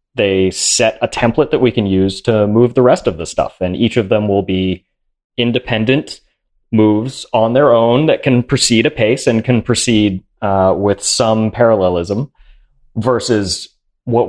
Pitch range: 95-125 Hz